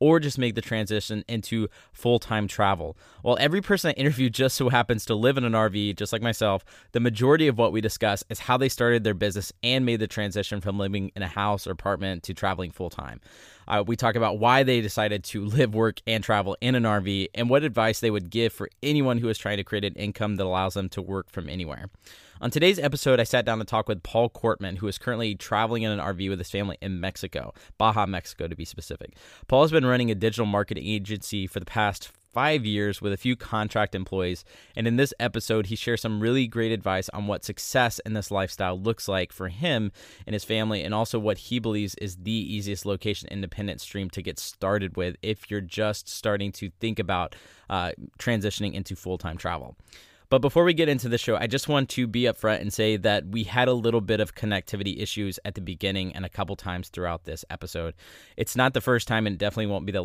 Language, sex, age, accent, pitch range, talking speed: English, male, 20-39, American, 95-115 Hz, 225 wpm